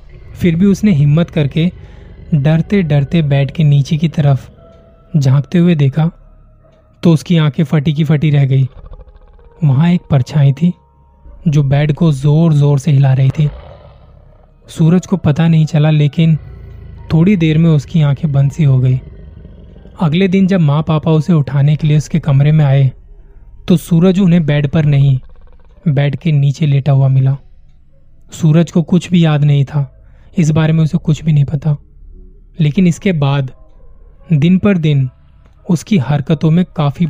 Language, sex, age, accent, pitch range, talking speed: Hindi, male, 20-39, native, 135-165 Hz, 165 wpm